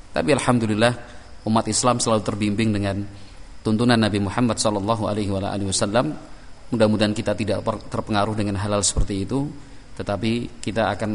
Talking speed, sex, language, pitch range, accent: 130 wpm, male, Indonesian, 100-120 Hz, native